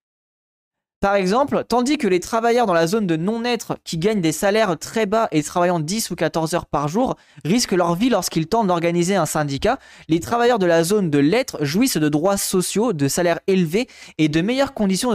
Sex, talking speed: male, 200 wpm